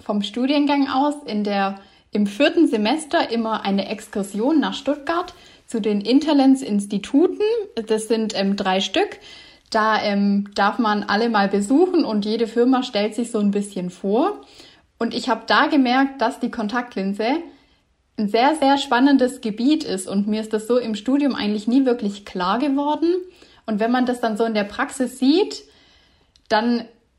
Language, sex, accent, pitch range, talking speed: German, female, German, 215-280 Hz, 160 wpm